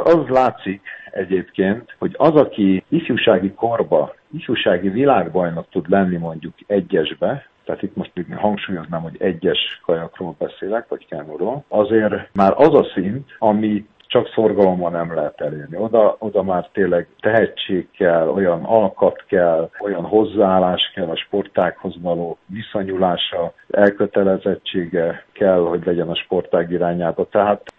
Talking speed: 130 wpm